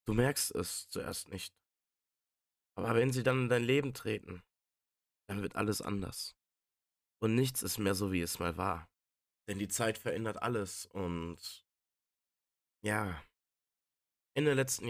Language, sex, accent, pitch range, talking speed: German, male, German, 85-110 Hz, 140 wpm